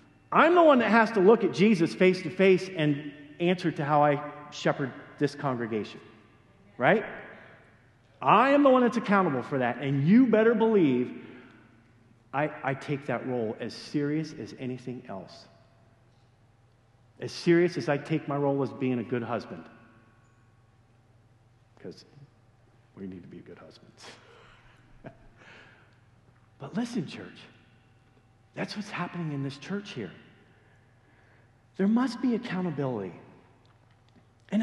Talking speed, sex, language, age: 130 wpm, male, English, 50-69